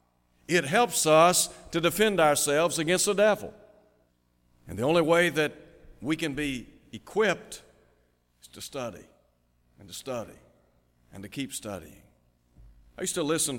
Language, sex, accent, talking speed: English, male, American, 140 wpm